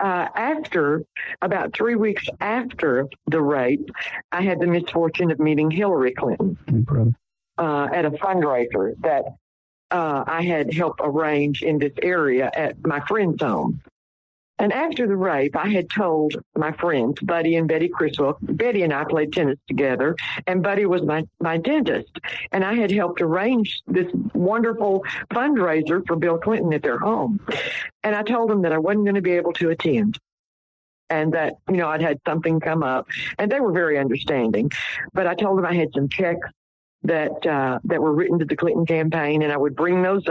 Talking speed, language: 180 wpm, English